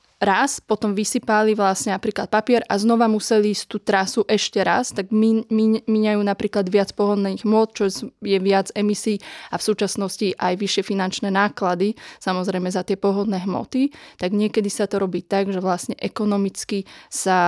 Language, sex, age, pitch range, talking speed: Slovak, female, 20-39, 195-220 Hz, 165 wpm